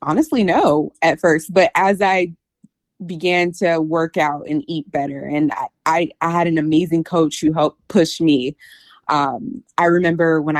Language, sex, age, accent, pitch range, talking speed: English, female, 20-39, American, 150-185 Hz, 170 wpm